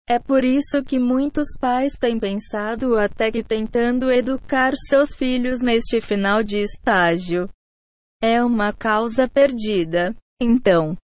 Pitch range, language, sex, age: 210-260 Hz, Portuguese, female, 20-39